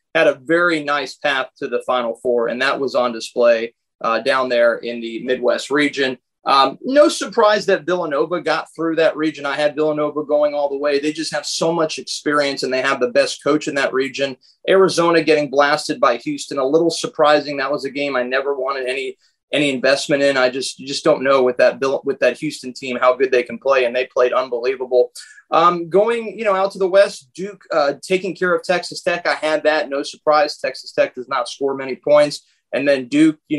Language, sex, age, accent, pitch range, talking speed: English, male, 30-49, American, 135-160 Hz, 220 wpm